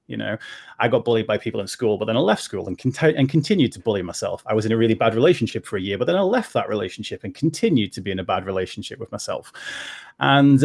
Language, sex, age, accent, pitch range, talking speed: English, male, 30-49, British, 110-135 Hz, 270 wpm